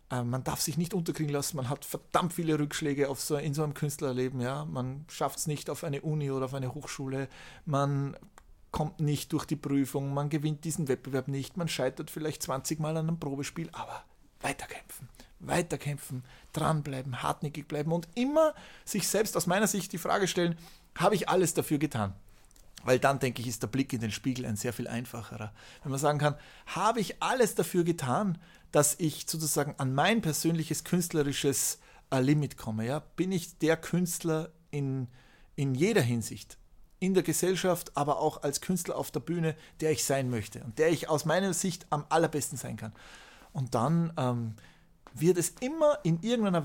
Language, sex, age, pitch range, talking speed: German, male, 40-59, 130-165 Hz, 180 wpm